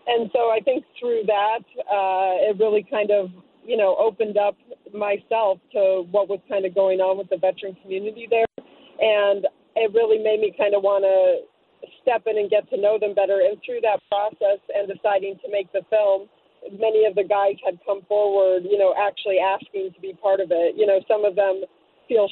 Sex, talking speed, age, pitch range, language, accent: female, 205 wpm, 40-59, 190-215 Hz, English, American